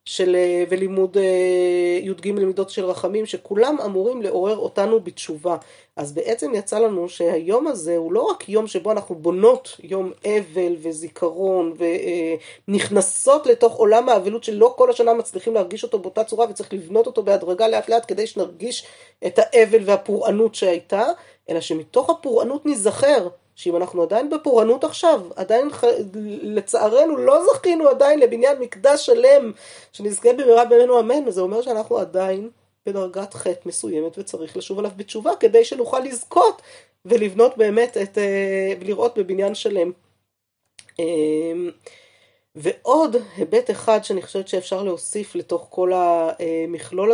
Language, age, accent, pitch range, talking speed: Hebrew, 30-49, native, 175-235 Hz, 135 wpm